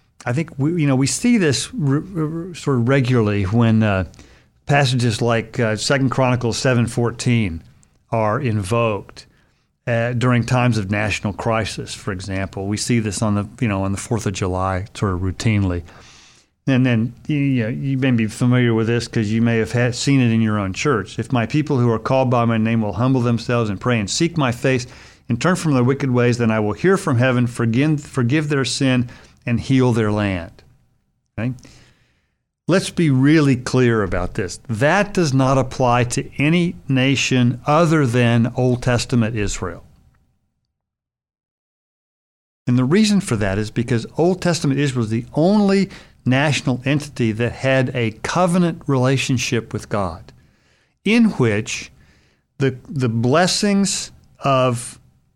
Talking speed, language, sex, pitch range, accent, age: 165 wpm, English, male, 110-135 Hz, American, 40-59